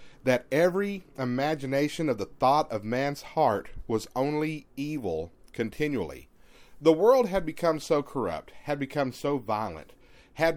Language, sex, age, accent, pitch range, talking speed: English, male, 40-59, American, 130-175 Hz, 135 wpm